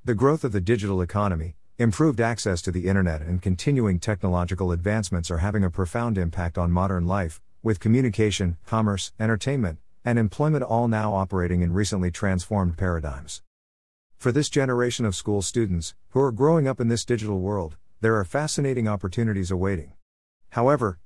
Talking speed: 160 wpm